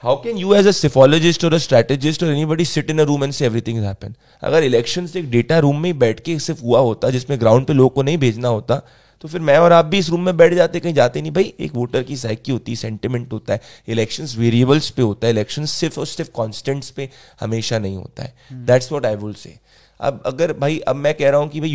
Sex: male